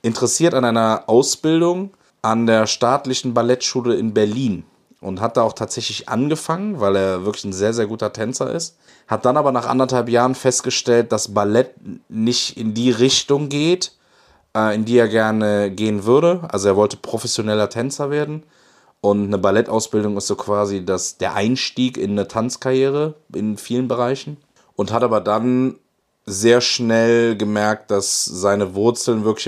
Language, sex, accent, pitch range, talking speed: German, male, German, 105-125 Hz, 155 wpm